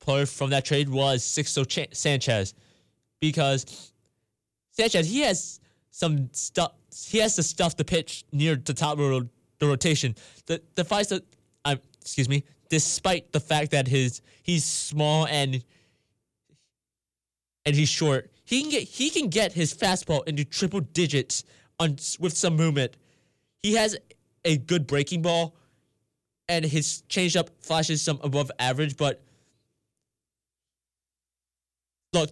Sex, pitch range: male, 135-160 Hz